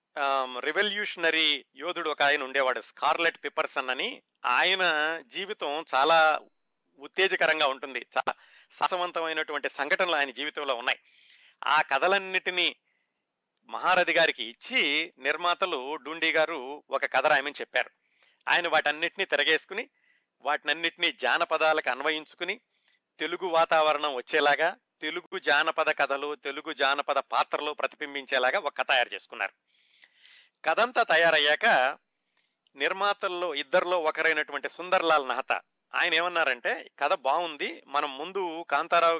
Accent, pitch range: native, 140-170 Hz